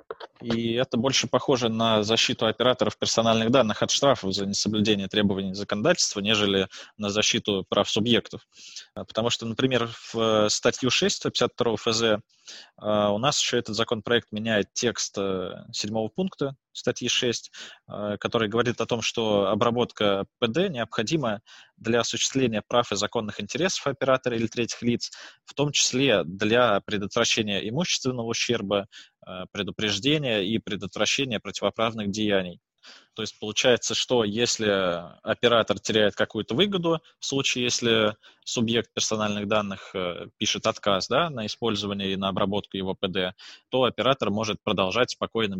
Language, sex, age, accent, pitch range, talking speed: Russian, male, 20-39, native, 100-120 Hz, 130 wpm